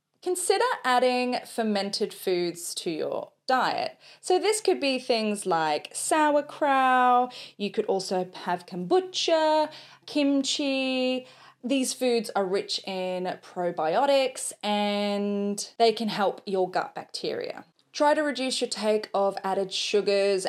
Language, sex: English, female